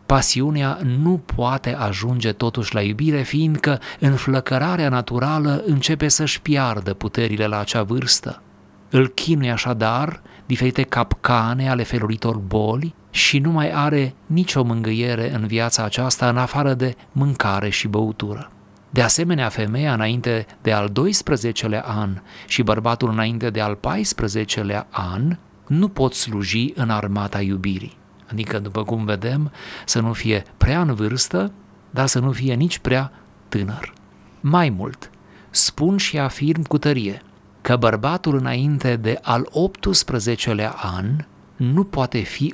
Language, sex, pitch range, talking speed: Romanian, male, 110-145 Hz, 135 wpm